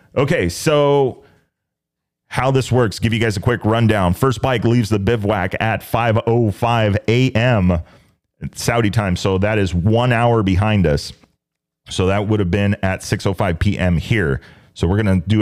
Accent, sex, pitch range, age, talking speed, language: American, male, 95-115 Hz, 30-49, 165 wpm, English